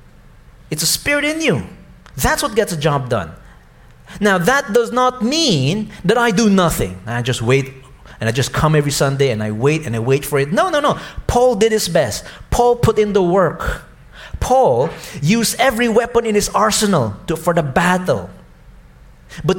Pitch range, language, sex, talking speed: 125-210 Hz, English, male, 185 wpm